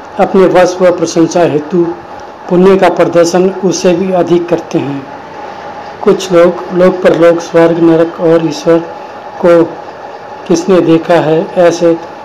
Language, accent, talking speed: Hindi, native, 125 wpm